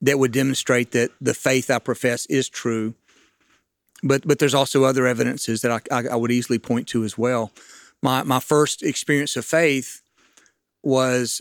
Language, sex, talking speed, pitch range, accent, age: English, male, 175 wpm, 125-140 Hz, American, 40-59